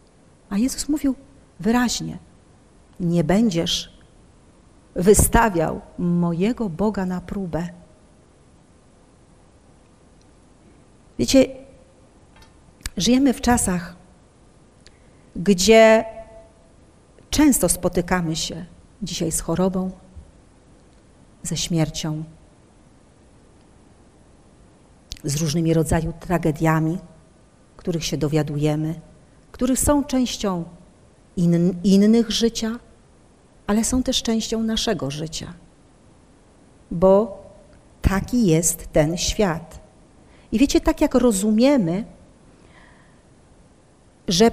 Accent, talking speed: native, 75 wpm